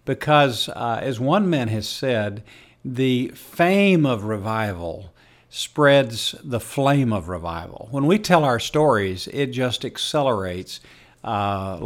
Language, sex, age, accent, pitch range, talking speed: English, male, 50-69, American, 110-140 Hz, 125 wpm